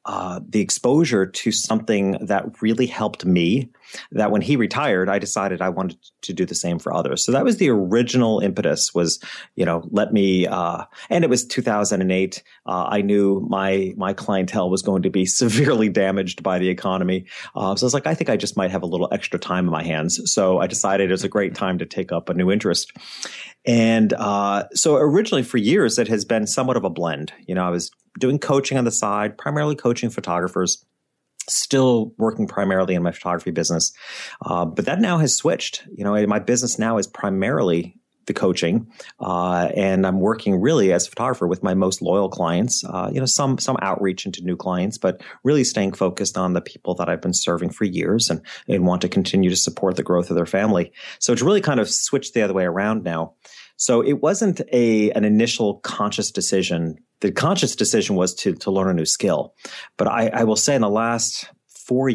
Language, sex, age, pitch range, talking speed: English, male, 30-49, 90-115 Hz, 210 wpm